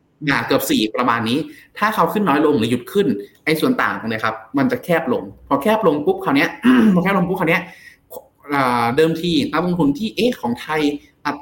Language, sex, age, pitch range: Thai, male, 20-39, 125-190 Hz